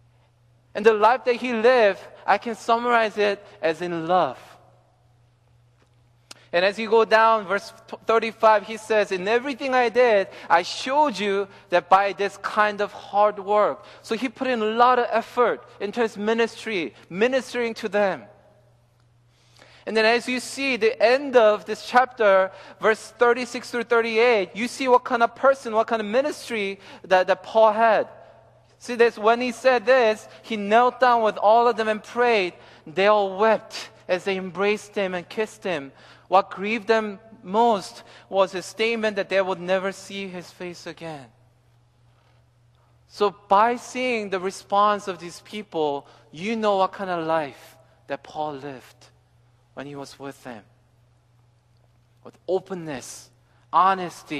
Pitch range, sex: 145-225 Hz, male